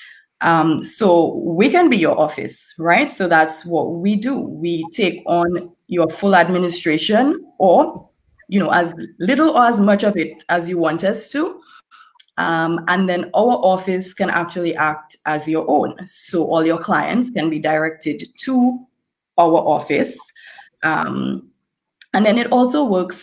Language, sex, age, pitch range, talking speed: English, female, 20-39, 160-205 Hz, 160 wpm